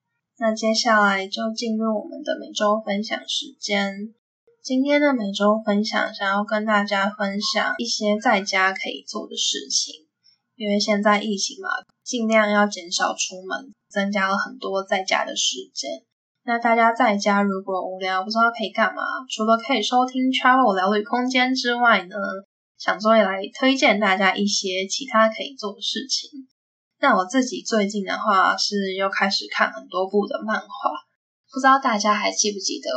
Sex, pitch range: female, 205-255 Hz